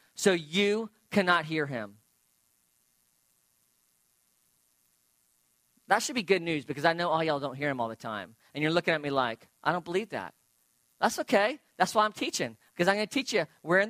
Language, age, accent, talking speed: English, 40-59, American, 195 wpm